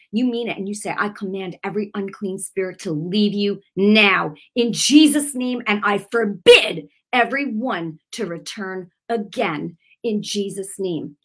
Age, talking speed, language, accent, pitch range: 40-59, 150 wpm, English, American, 170-220 Hz